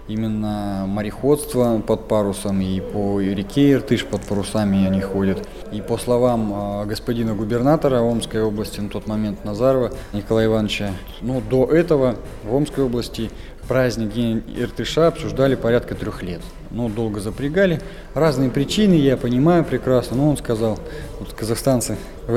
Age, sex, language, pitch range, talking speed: 20-39, male, Russian, 100-125 Hz, 135 wpm